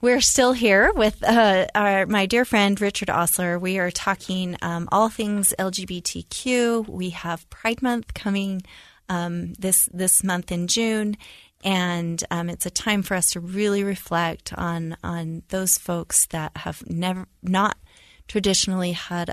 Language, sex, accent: English, female, American